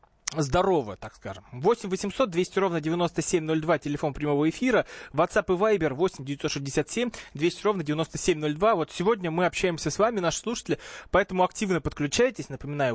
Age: 20-39